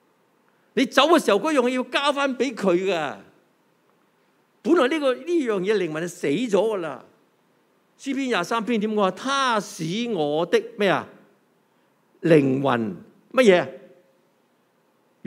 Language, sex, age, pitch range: Chinese, male, 50-69, 170-265 Hz